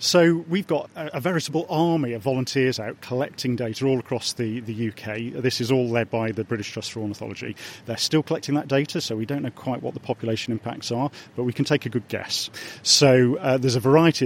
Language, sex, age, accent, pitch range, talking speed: English, male, 40-59, British, 115-135 Hz, 225 wpm